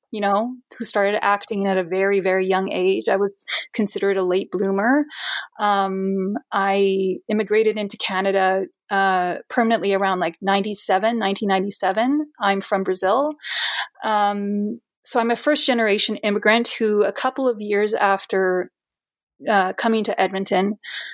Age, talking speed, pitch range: 30-49, 135 wpm, 195-230 Hz